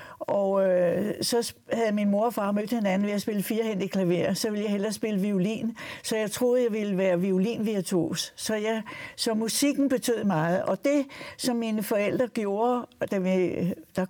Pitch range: 195-245 Hz